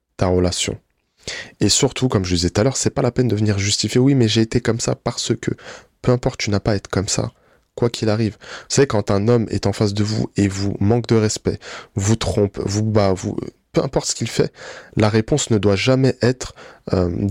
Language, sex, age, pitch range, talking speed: French, male, 20-39, 95-120 Hz, 230 wpm